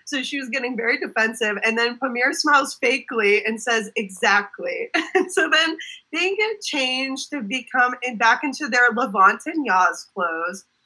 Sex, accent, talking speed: female, American, 165 wpm